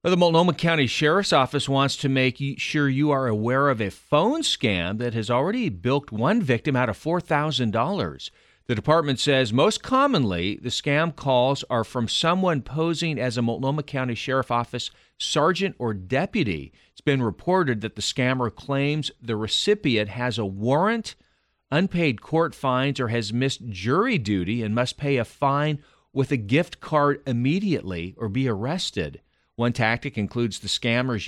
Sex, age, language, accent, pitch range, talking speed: male, 40-59, English, American, 105-140 Hz, 160 wpm